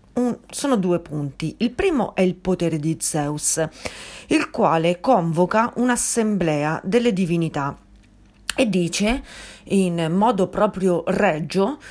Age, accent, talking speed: 40-59, native, 110 wpm